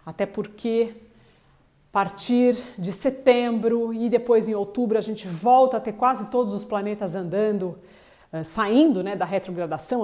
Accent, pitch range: Brazilian, 185-225 Hz